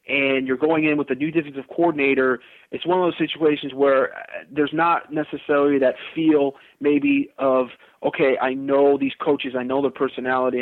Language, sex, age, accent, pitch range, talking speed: English, male, 30-49, American, 130-155 Hz, 175 wpm